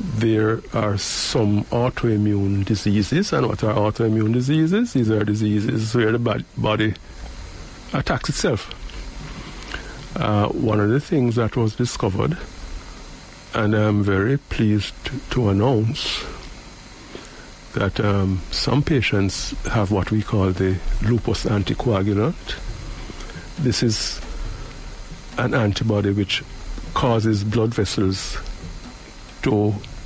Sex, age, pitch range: male, 60-79, 95-115 Hz